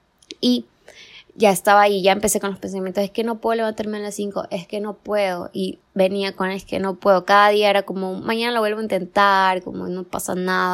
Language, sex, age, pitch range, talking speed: Spanish, female, 20-39, 185-215 Hz, 230 wpm